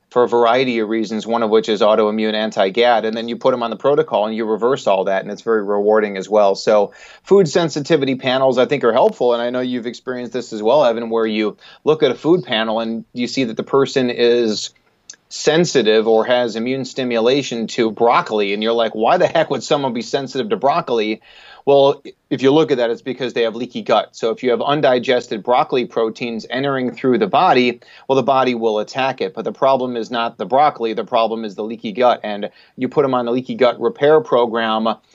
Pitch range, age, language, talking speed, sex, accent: 110-125 Hz, 30-49, English, 225 wpm, male, American